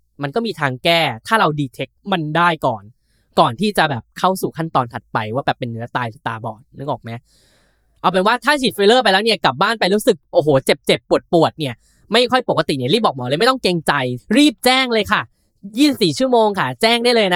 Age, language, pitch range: 10-29, Thai, 140-220 Hz